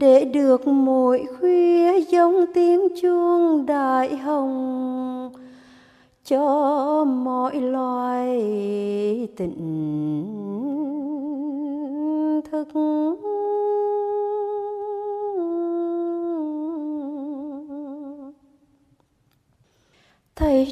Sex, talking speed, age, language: female, 45 wpm, 20-39, Vietnamese